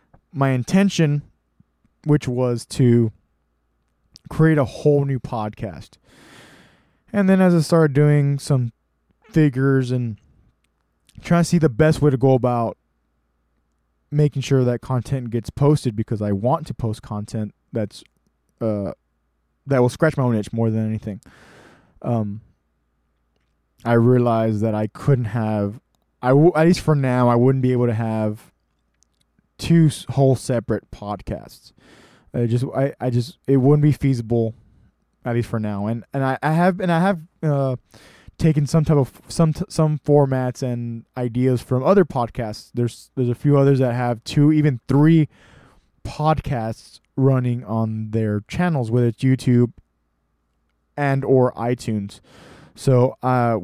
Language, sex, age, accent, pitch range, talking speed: English, male, 20-39, American, 110-140 Hz, 145 wpm